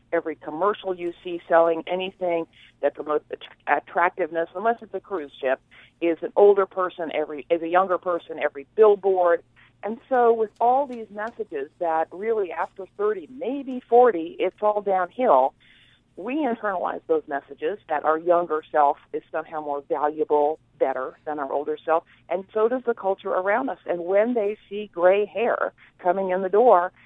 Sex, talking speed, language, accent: female, 165 wpm, English, American